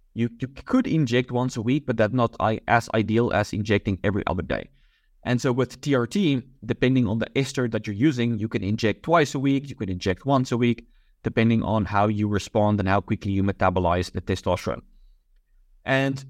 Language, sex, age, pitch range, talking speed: English, male, 20-39, 105-130 Hz, 195 wpm